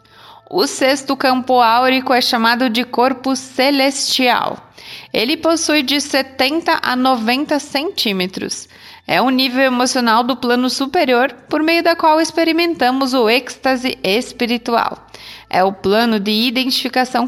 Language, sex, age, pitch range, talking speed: English, female, 20-39, 235-280 Hz, 125 wpm